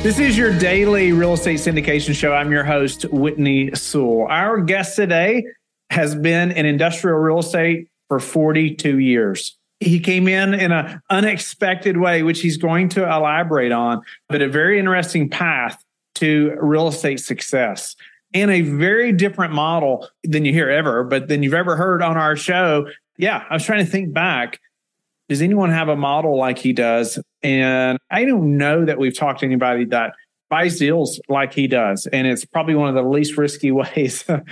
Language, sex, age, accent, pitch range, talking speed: English, male, 40-59, American, 145-180 Hz, 180 wpm